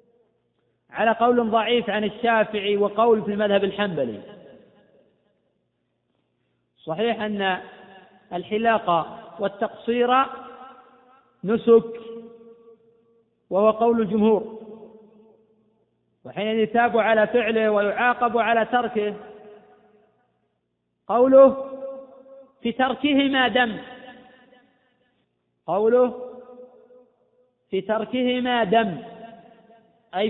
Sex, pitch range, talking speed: male, 215-250 Hz, 70 wpm